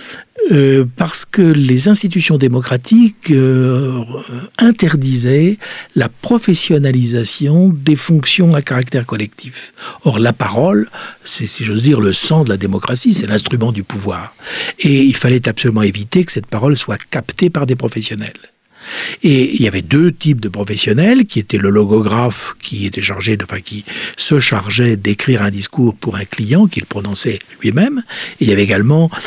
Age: 60-79